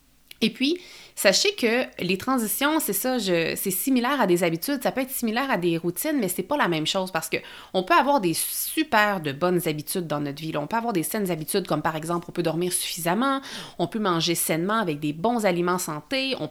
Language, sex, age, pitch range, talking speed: French, female, 30-49, 170-235 Hz, 220 wpm